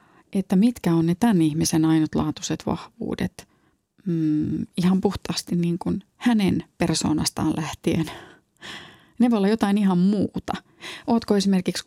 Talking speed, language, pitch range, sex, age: 120 wpm, Finnish, 165-210 Hz, female, 30-49